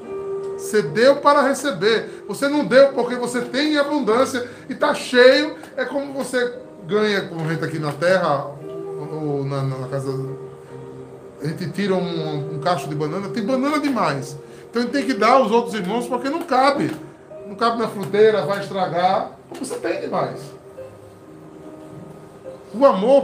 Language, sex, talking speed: Portuguese, male, 160 wpm